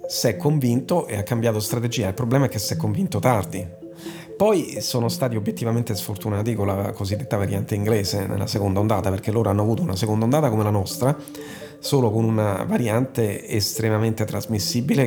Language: Italian